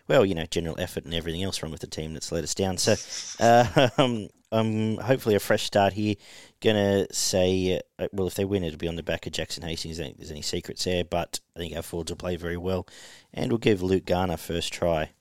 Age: 40-59